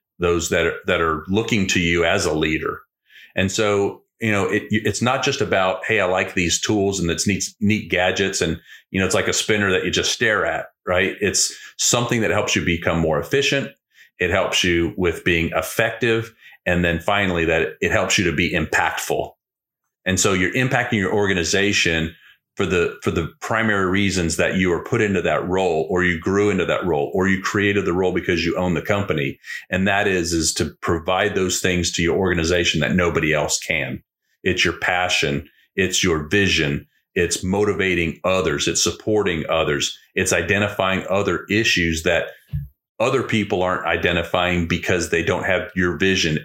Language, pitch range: English, 85-100 Hz